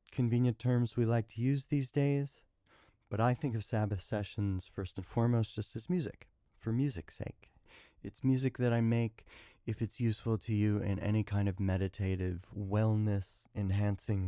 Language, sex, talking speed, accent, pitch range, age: English, male, 165 wpm, American, 95-120 Hz, 30-49